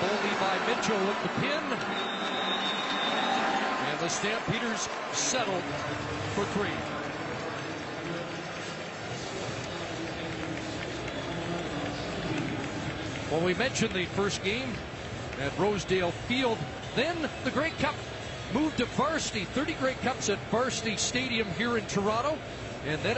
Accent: American